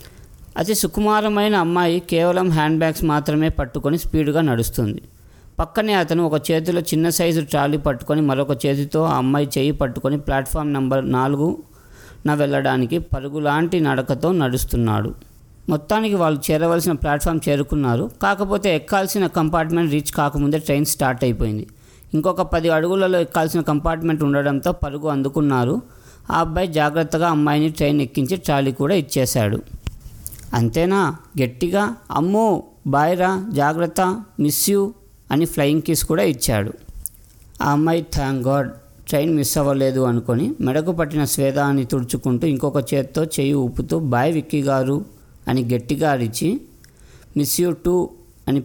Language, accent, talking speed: Telugu, native, 120 wpm